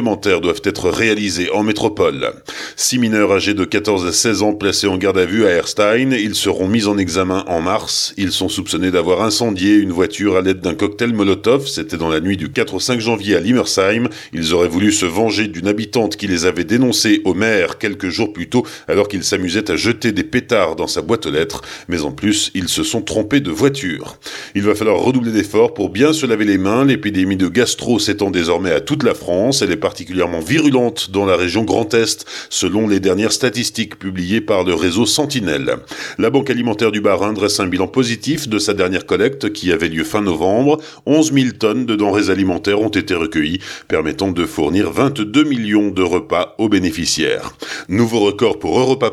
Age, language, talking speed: 40-59, French, 205 wpm